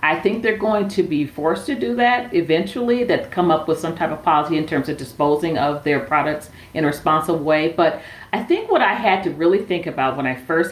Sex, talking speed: female, 240 wpm